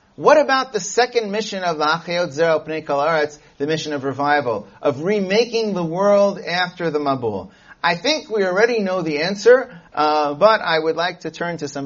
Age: 40-59